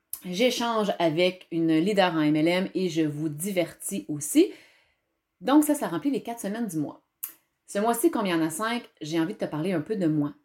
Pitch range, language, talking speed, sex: 165-260 Hz, French, 210 wpm, female